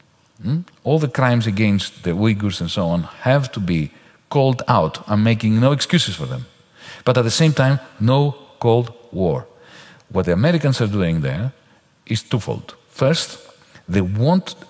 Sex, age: male, 50-69